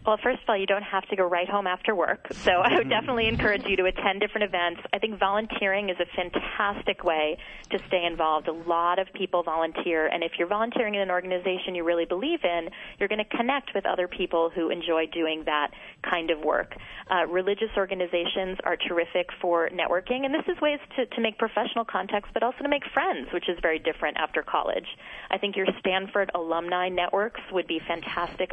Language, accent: English, American